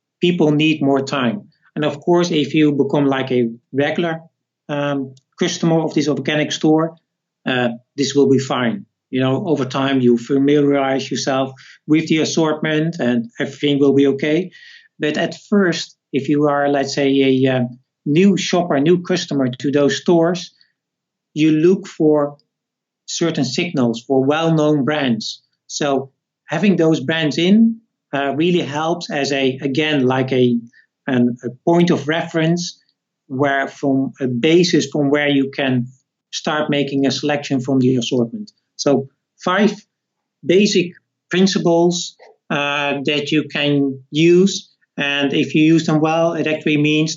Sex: male